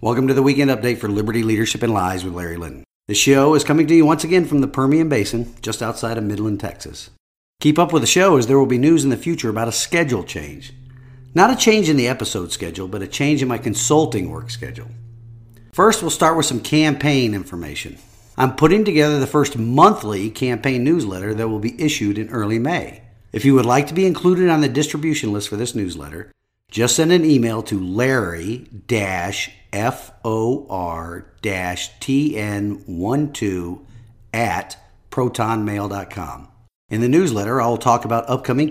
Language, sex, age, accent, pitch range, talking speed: English, male, 50-69, American, 105-145 Hz, 180 wpm